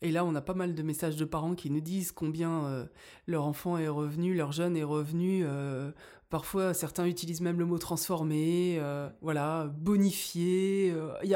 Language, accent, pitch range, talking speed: French, French, 165-200 Hz, 200 wpm